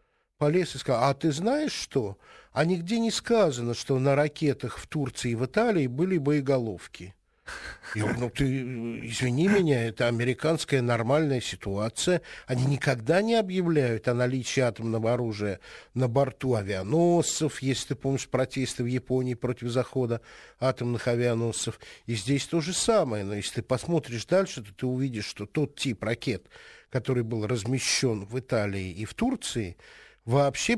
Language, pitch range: Russian, 120-170 Hz